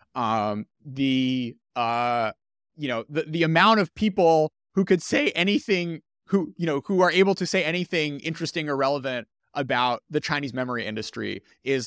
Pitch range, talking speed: 125-175 Hz, 160 wpm